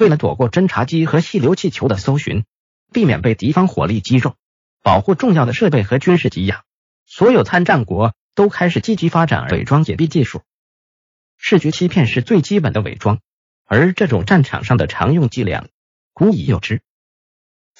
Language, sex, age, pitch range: Chinese, male, 50-69, 125-185 Hz